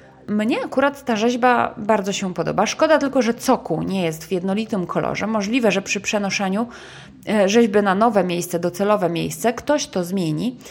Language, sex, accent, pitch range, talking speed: Polish, female, native, 175-230 Hz, 165 wpm